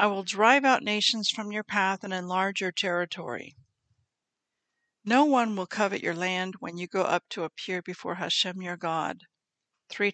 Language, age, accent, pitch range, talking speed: English, 60-79, American, 175-230 Hz, 170 wpm